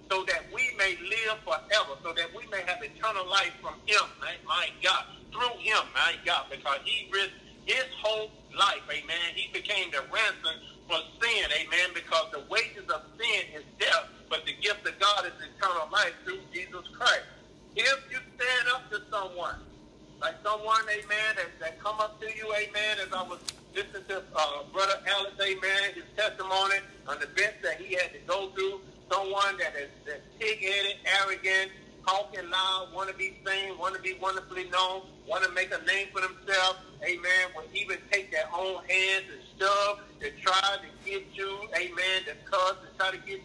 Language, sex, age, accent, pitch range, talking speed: English, male, 50-69, American, 185-215 Hz, 185 wpm